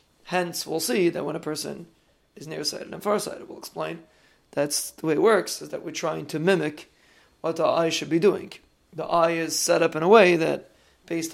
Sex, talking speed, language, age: male, 210 wpm, English, 30-49